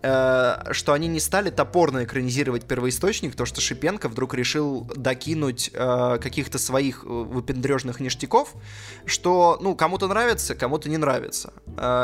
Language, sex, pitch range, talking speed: Russian, male, 120-145 Hz, 130 wpm